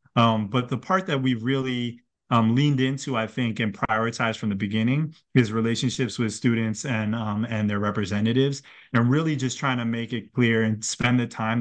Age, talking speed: 30-49, 195 wpm